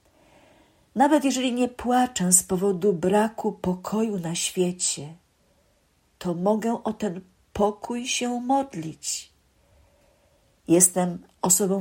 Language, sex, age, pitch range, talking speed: Polish, female, 50-69, 175-215 Hz, 95 wpm